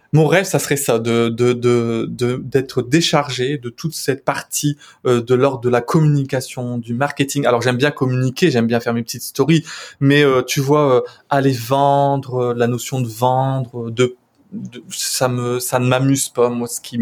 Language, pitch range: French, 125-155 Hz